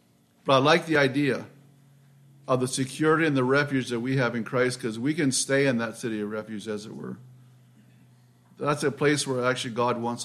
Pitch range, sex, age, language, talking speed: 115-140 Hz, male, 50-69, English, 205 wpm